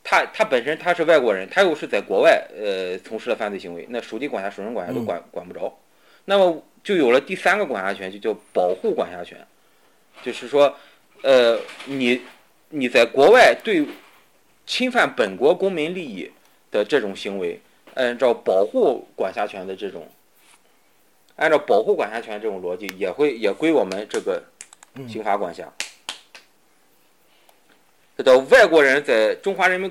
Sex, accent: male, native